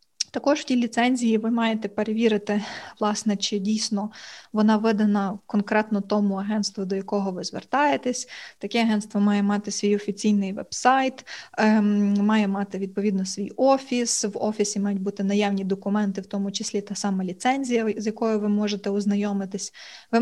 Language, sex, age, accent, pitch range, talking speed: Ukrainian, female, 20-39, native, 205-230 Hz, 145 wpm